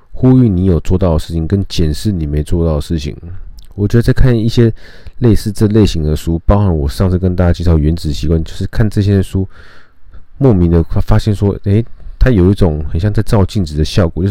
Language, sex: Chinese, male